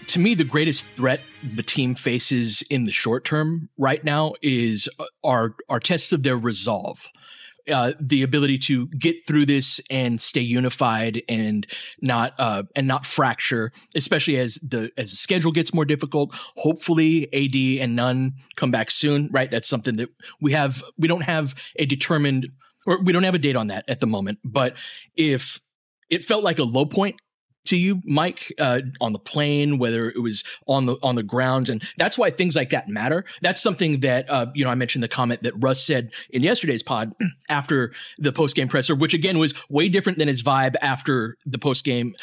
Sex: male